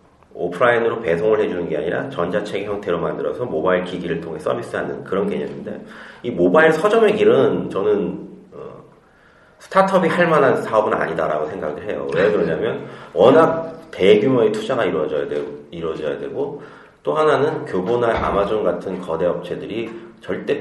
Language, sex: Korean, male